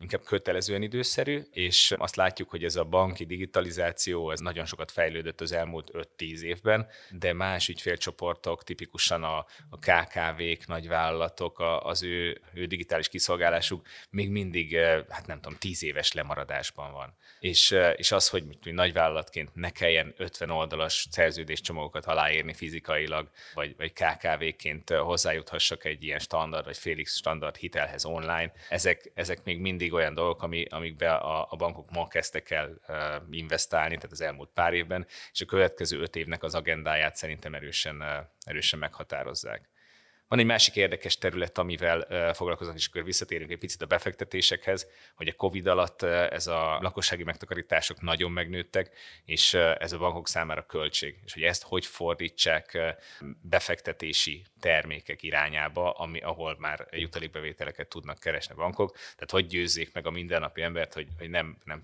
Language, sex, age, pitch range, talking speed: Hungarian, male, 20-39, 80-90 Hz, 145 wpm